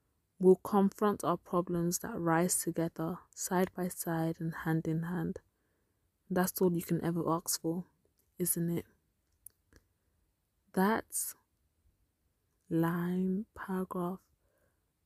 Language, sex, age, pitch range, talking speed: English, female, 20-39, 170-200 Hz, 105 wpm